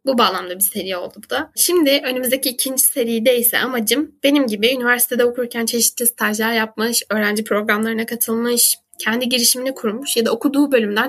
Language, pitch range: Turkish, 225-270 Hz